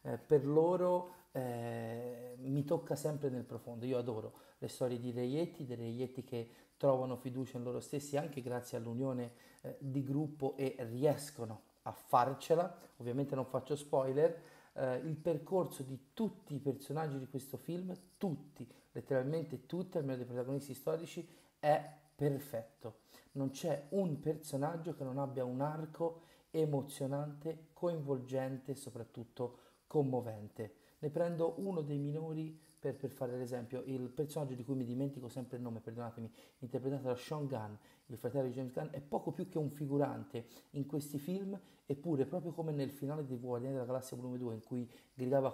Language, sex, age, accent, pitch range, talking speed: Italian, male, 40-59, native, 120-150 Hz, 155 wpm